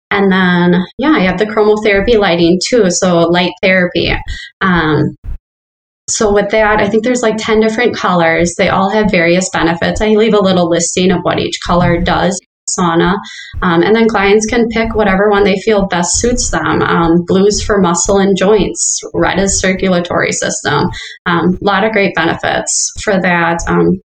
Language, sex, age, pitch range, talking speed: English, female, 20-39, 175-210 Hz, 175 wpm